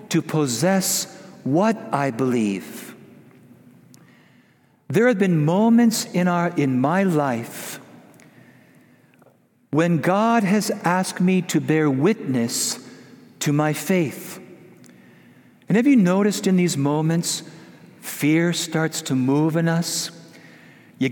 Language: English